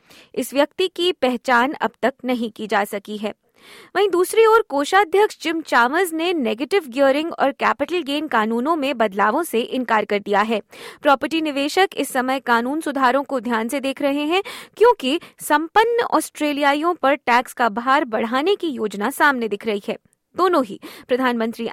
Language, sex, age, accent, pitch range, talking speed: Hindi, female, 20-39, native, 230-325 Hz, 165 wpm